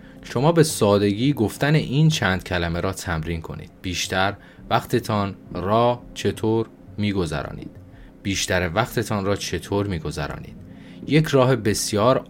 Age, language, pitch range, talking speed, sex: 30-49, Persian, 85-110 Hz, 110 wpm, male